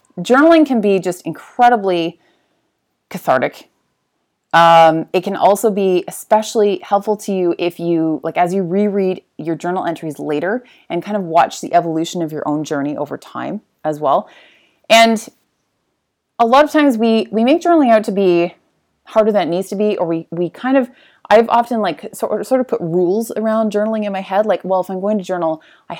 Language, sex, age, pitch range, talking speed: English, female, 30-49, 180-255 Hz, 190 wpm